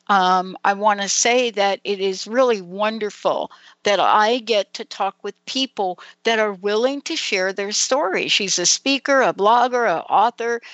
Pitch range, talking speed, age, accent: 190-240 Hz, 175 wpm, 60-79, American